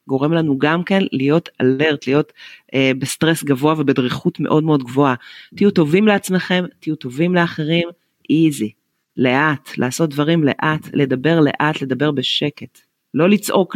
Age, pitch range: 40-59, 150-180 Hz